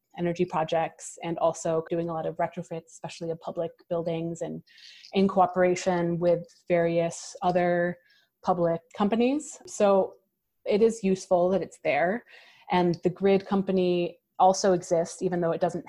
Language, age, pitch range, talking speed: English, 30-49, 170-185 Hz, 145 wpm